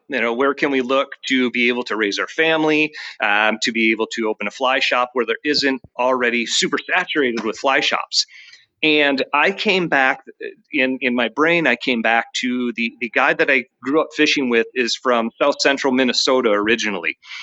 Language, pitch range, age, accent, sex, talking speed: English, 120-155 Hz, 30-49, American, male, 200 wpm